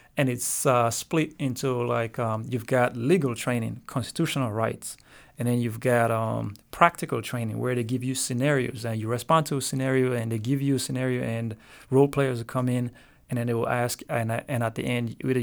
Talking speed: 215 wpm